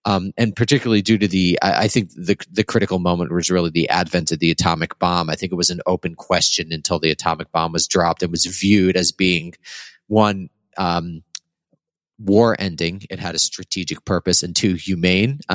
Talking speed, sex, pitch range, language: 195 wpm, male, 85-100 Hz, English